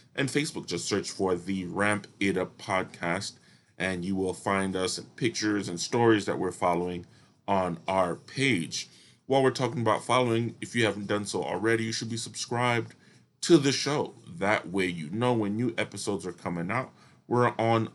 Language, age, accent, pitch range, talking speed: English, 30-49, American, 95-120 Hz, 180 wpm